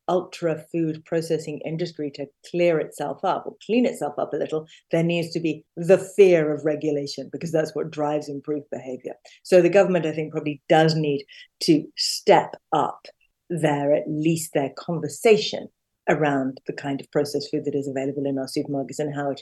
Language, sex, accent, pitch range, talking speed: English, female, British, 145-175 Hz, 180 wpm